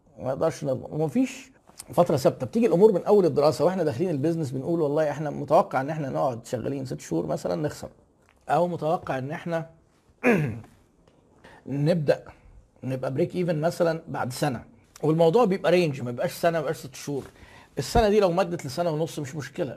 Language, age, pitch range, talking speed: Arabic, 50-69, 130-175 Hz, 155 wpm